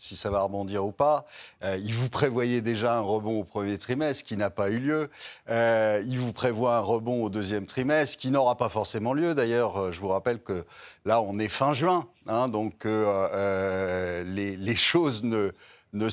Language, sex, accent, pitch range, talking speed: French, male, French, 110-150 Hz, 195 wpm